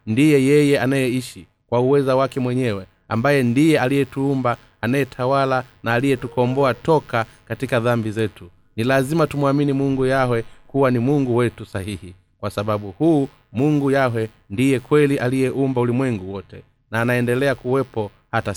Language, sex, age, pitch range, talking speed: Swahili, male, 30-49, 115-140 Hz, 135 wpm